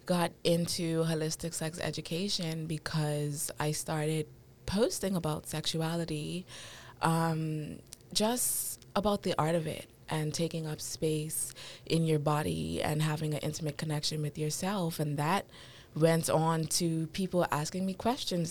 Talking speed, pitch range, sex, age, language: 135 wpm, 150-165 Hz, female, 20-39, English